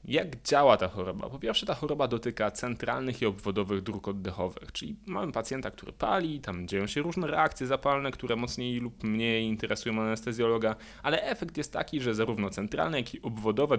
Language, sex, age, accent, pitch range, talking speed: Polish, male, 20-39, native, 105-140 Hz, 180 wpm